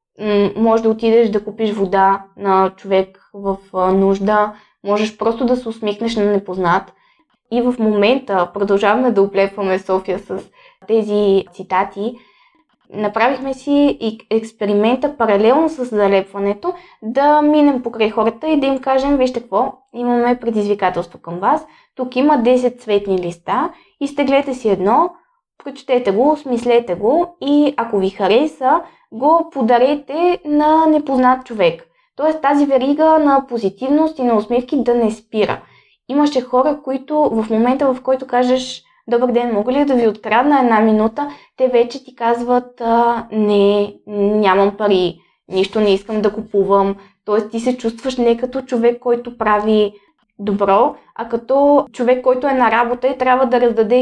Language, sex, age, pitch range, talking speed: Bulgarian, female, 20-39, 210-270 Hz, 145 wpm